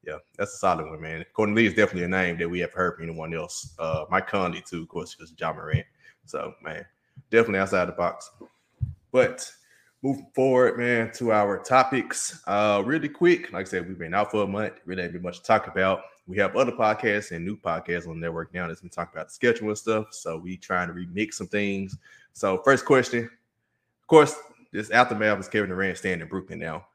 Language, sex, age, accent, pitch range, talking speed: English, male, 20-39, American, 90-110 Hz, 220 wpm